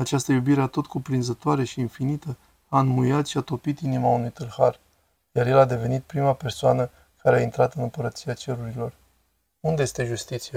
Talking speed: 170 wpm